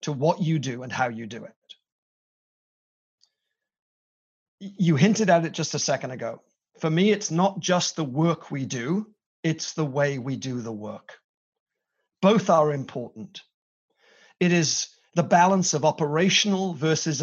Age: 40-59